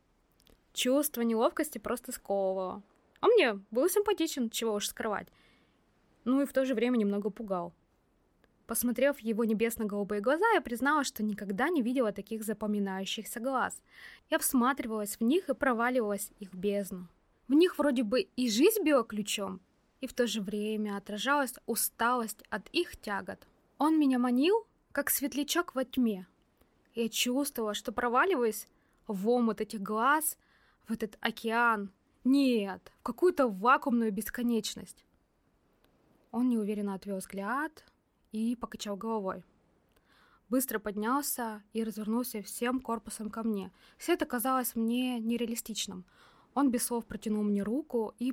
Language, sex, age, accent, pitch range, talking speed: Russian, female, 20-39, native, 215-265 Hz, 135 wpm